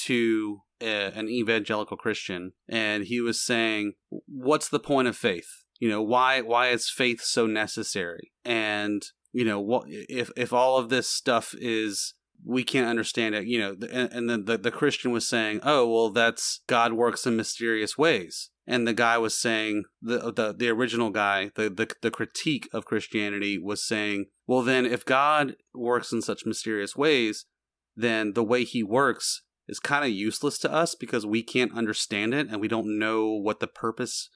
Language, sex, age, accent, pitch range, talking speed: English, male, 30-49, American, 110-125 Hz, 185 wpm